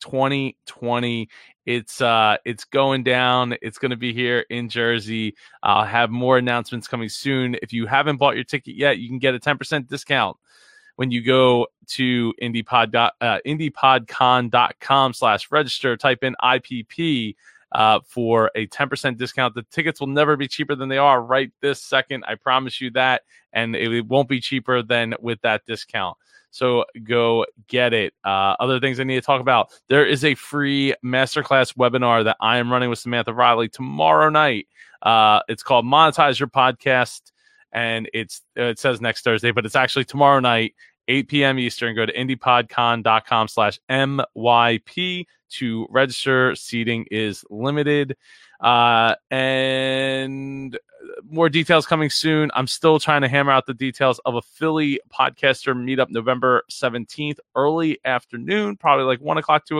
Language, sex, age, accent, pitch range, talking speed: English, male, 20-39, American, 120-140 Hz, 160 wpm